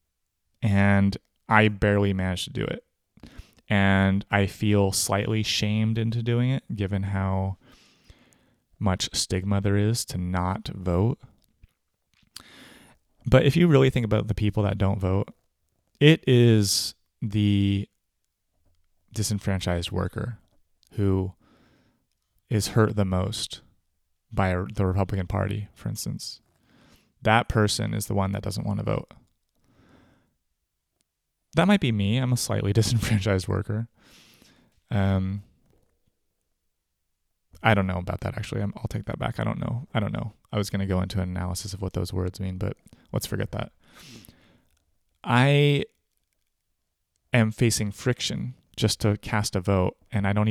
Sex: male